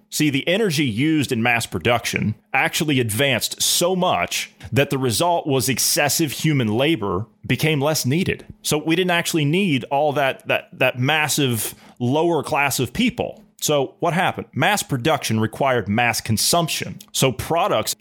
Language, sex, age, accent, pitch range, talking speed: English, male, 30-49, American, 115-165 Hz, 150 wpm